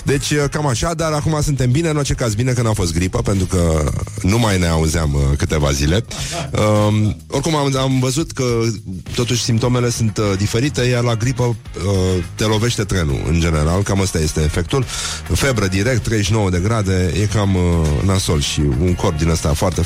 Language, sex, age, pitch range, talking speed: Romanian, male, 30-49, 85-115 Hz, 190 wpm